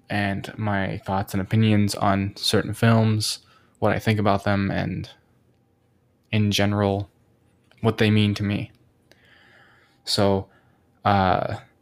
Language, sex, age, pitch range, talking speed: English, male, 20-39, 100-120 Hz, 115 wpm